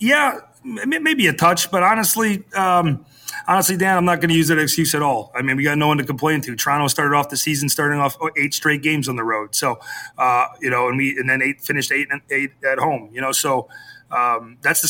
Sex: male